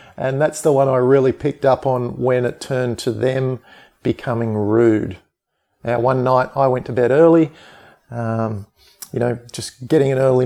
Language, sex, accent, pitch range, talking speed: English, male, Australian, 120-145 Hz, 180 wpm